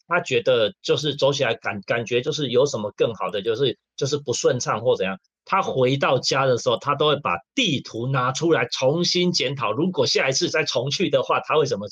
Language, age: Chinese, 30-49